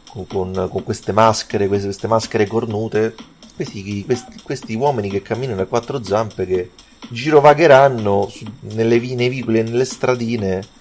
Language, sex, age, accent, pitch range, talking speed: Italian, male, 30-49, native, 95-120 Hz, 130 wpm